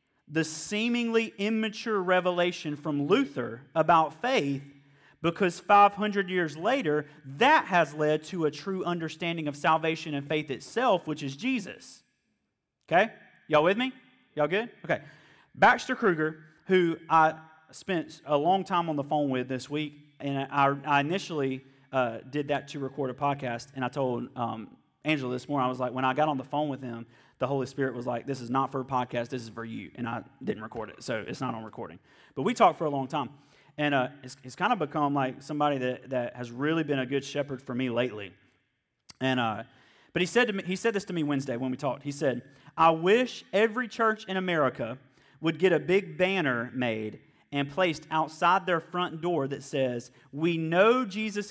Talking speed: 200 wpm